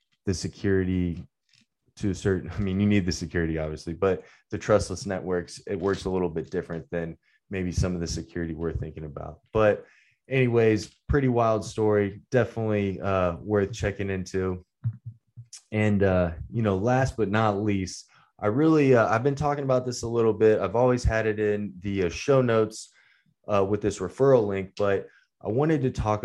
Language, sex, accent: English, male, American